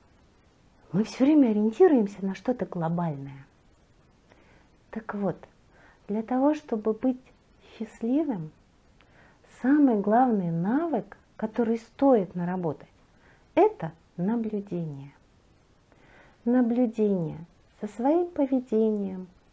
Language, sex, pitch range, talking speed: Russian, female, 190-265 Hz, 80 wpm